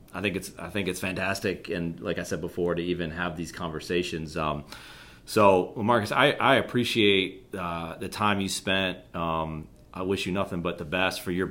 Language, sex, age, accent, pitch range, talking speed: English, male, 30-49, American, 90-110 Hz, 200 wpm